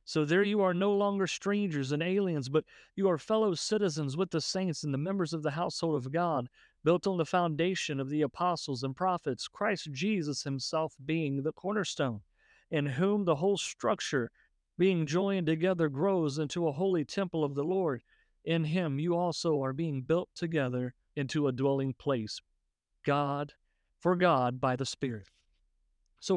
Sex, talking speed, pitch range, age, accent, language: male, 170 wpm, 150-195 Hz, 50-69, American, English